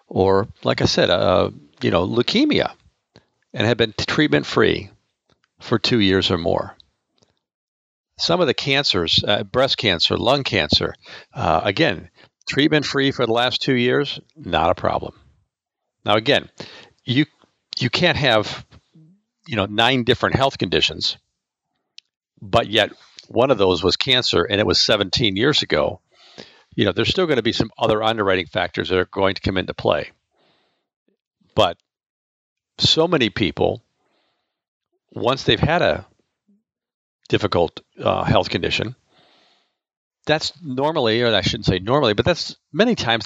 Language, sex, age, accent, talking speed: English, male, 50-69, American, 145 wpm